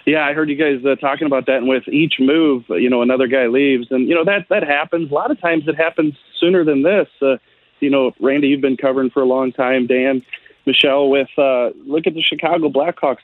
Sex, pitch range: male, 130-165 Hz